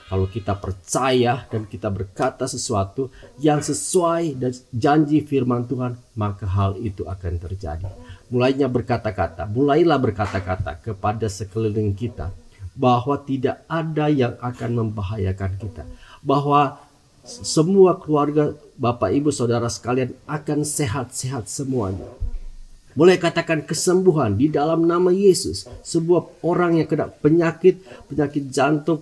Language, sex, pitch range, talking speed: Indonesian, male, 105-150 Hz, 115 wpm